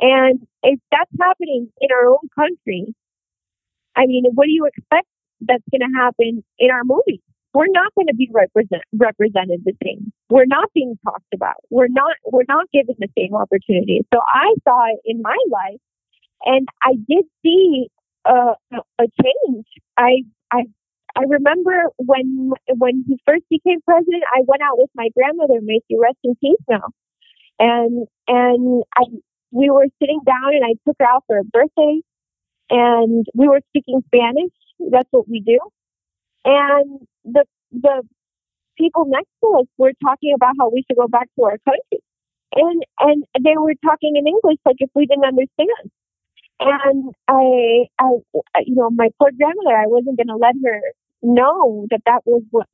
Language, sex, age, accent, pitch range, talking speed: English, female, 40-59, American, 235-285 Hz, 170 wpm